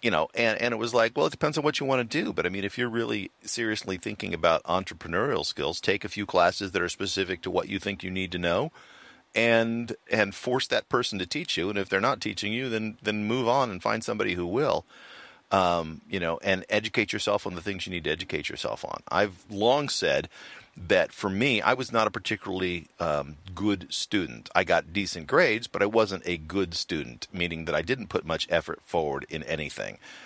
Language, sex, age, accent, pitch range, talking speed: English, male, 50-69, American, 90-110 Hz, 230 wpm